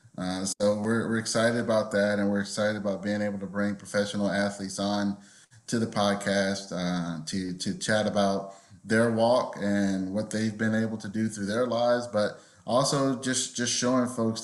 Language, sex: English, male